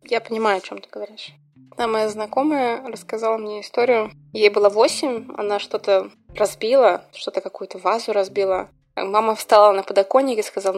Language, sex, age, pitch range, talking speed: Russian, female, 20-39, 195-225 Hz, 155 wpm